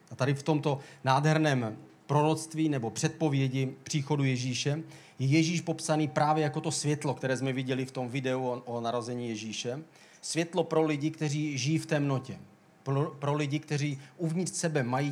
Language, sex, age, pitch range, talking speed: Czech, male, 40-59, 130-155 Hz, 160 wpm